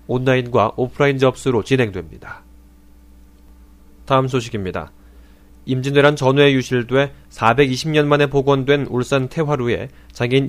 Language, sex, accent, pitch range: Korean, male, native, 115-145 Hz